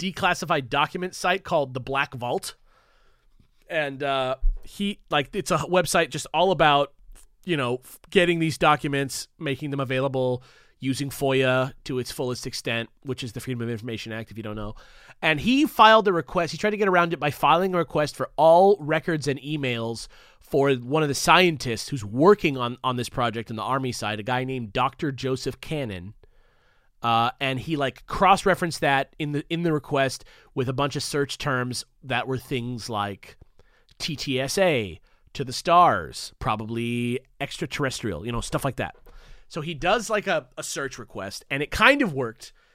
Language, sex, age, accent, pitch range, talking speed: English, male, 30-49, American, 125-165 Hz, 180 wpm